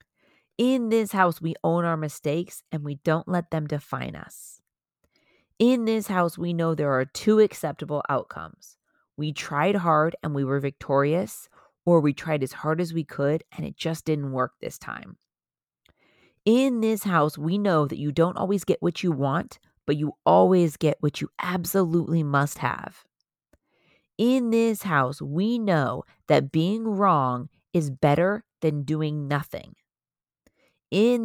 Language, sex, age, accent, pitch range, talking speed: English, female, 30-49, American, 150-195 Hz, 155 wpm